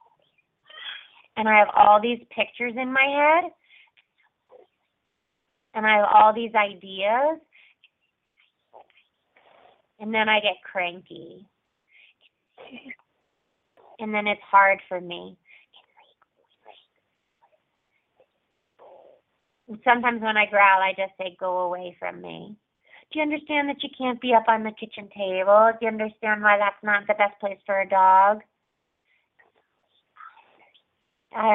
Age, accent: 30-49, American